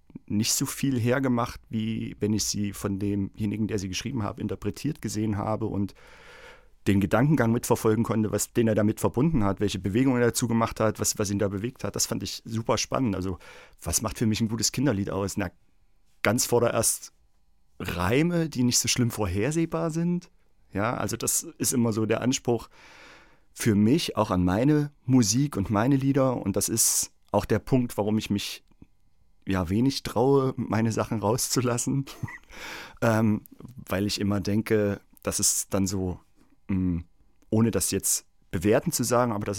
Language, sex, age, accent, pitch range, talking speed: German, male, 40-59, German, 100-120 Hz, 175 wpm